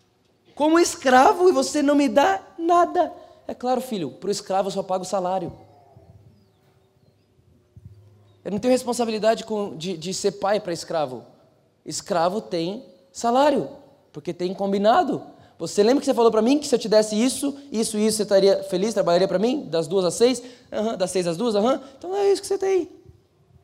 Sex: male